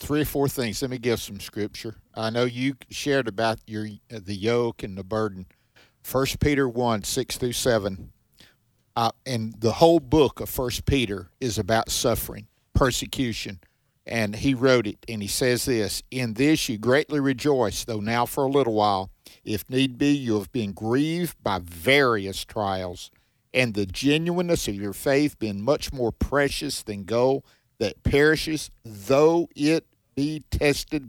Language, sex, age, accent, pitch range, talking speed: English, male, 50-69, American, 105-140 Hz, 160 wpm